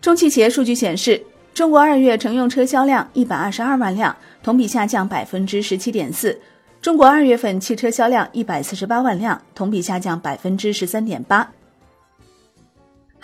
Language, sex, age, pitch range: Chinese, female, 30-49, 185-245 Hz